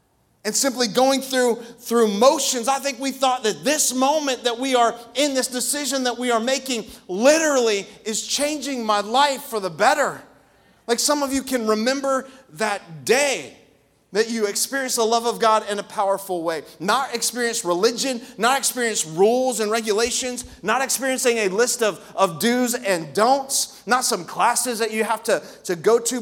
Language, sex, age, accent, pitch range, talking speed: English, male, 30-49, American, 210-270 Hz, 175 wpm